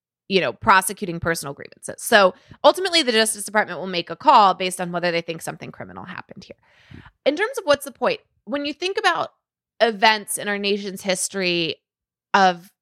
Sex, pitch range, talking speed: female, 185-250 Hz, 185 wpm